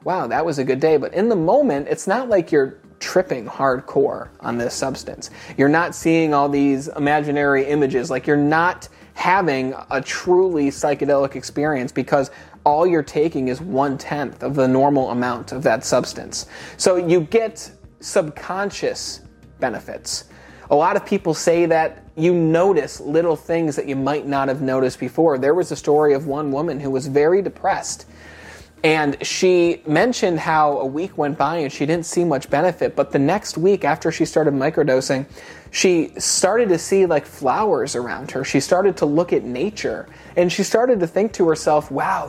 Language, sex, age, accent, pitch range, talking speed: English, male, 30-49, American, 140-180 Hz, 175 wpm